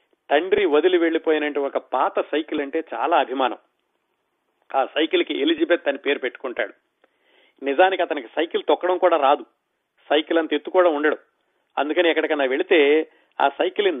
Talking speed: 125 wpm